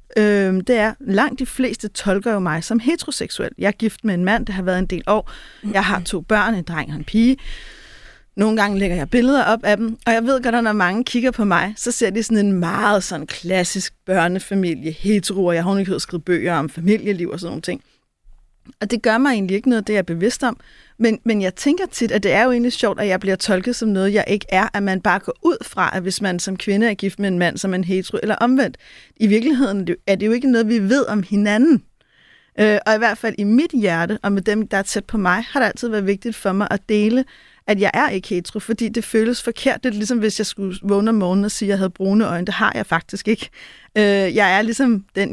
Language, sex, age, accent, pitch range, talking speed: Danish, female, 30-49, native, 190-230 Hz, 260 wpm